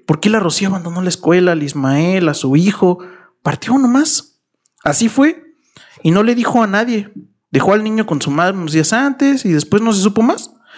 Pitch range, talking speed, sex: 140-185 Hz, 210 wpm, male